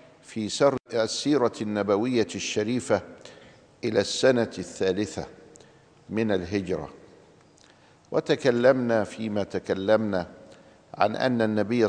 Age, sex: 50-69, male